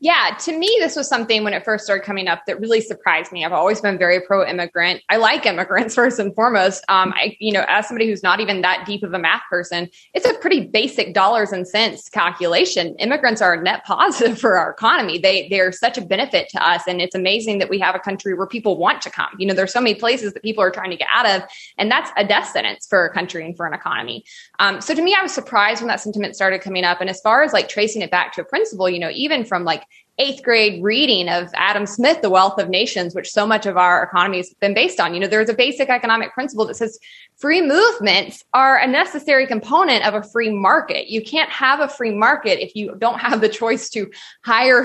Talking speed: 250 wpm